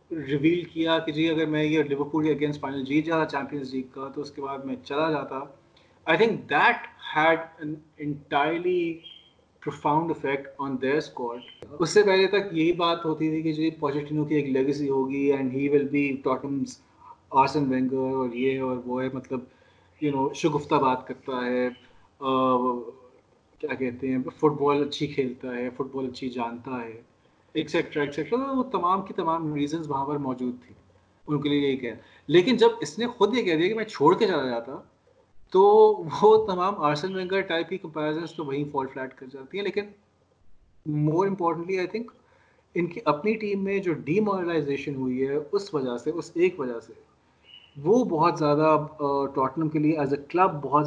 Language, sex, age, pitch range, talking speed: Urdu, male, 30-49, 135-165 Hz, 150 wpm